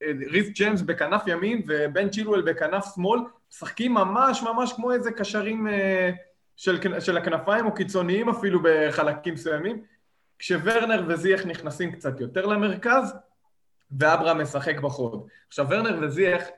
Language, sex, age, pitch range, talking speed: Hebrew, male, 20-39, 150-200 Hz, 125 wpm